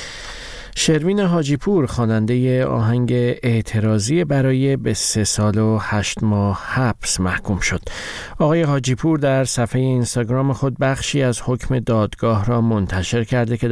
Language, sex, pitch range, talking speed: Persian, male, 100-130 Hz, 125 wpm